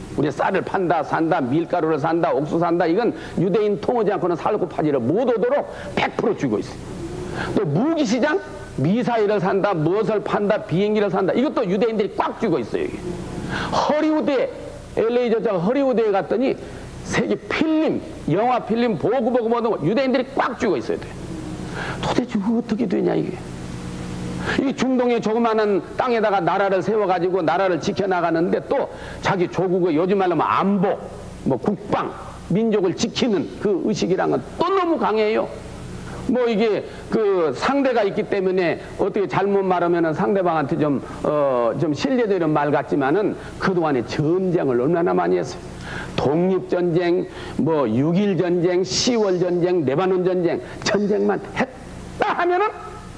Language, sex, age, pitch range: Korean, male, 50-69, 175-235 Hz